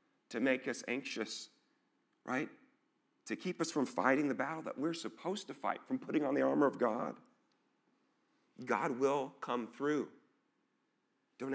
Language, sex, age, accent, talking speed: English, male, 40-59, American, 150 wpm